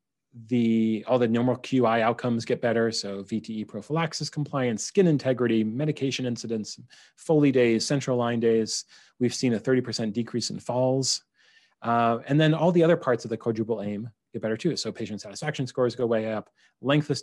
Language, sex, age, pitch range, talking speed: English, male, 30-49, 110-135 Hz, 180 wpm